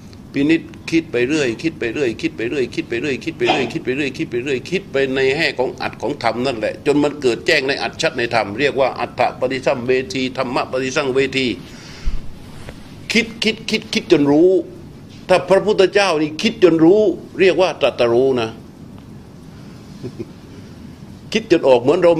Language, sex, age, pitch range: Thai, male, 60-79, 130-170 Hz